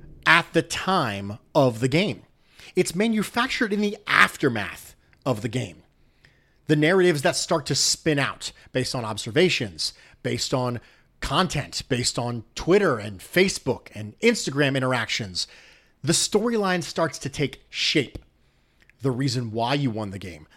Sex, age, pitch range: male, 30-49, 120-180 Hz